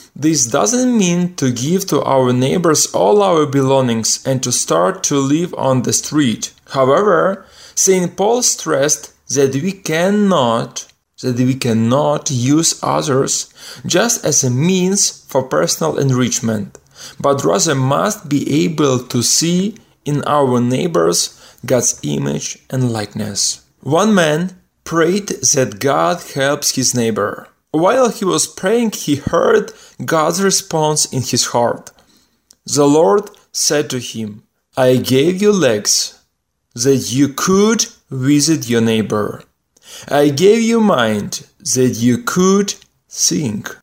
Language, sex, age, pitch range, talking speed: Ukrainian, male, 20-39, 125-185 Hz, 130 wpm